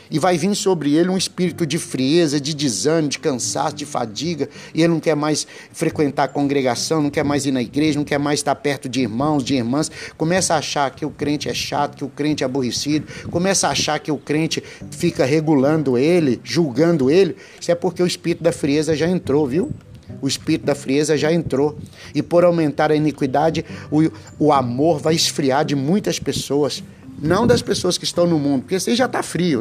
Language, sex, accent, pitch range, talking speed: Portuguese, male, Brazilian, 140-170 Hz, 210 wpm